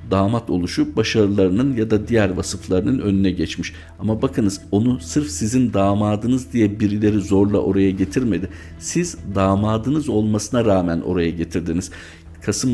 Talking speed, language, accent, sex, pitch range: 125 wpm, Turkish, native, male, 90-110 Hz